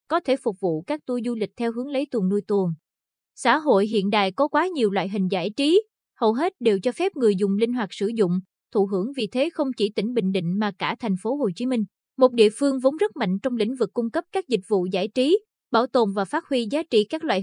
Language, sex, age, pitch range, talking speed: Vietnamese, female, 20-39, 205-270 Hz, 265 wpm